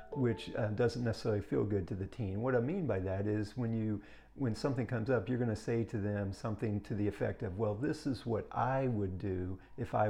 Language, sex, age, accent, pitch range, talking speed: English, male, 50-69, American, 105-130 Hz, 240 wpm